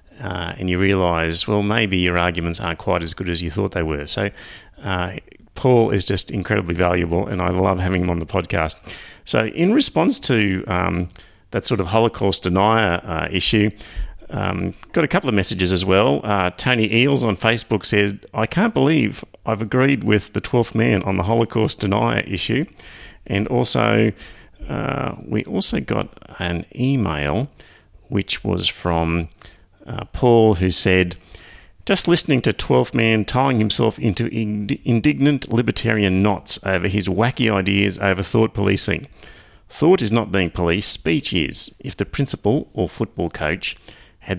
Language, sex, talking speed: English, male, 160 wpm